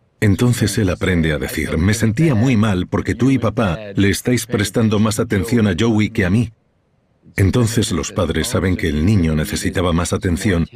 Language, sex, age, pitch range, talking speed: Spanish, male, 60-79, 85-115 Hz, 185 wpm